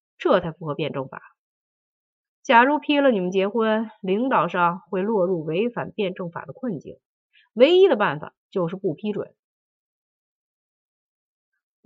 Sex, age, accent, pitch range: female, 30-49, native, 180-255 Hz